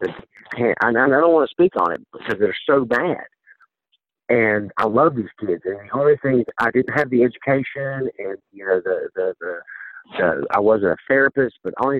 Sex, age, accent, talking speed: male, 50-69, American, 200 wpm